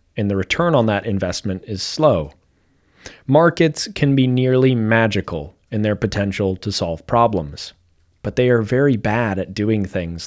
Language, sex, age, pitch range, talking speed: English, male, 30-49, 95-130 Hz, 160 wpm